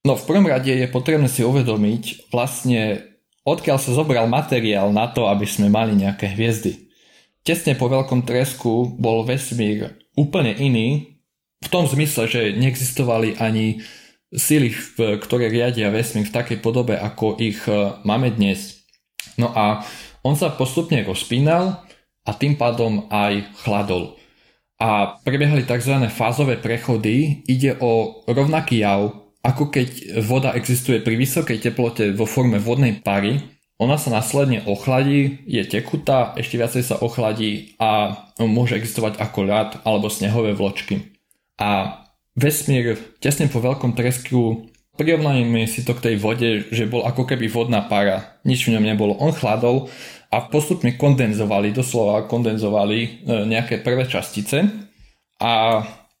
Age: 20-39